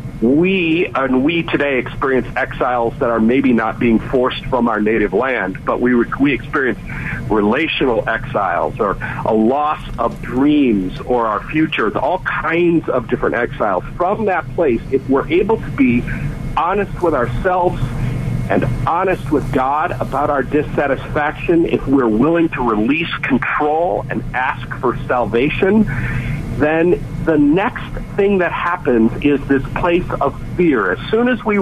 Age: 50-69